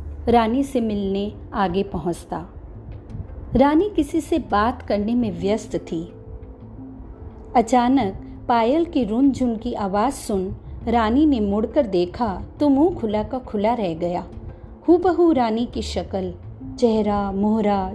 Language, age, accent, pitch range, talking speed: Hindi, 50-69, native, 190-260 Hz, 125 wpm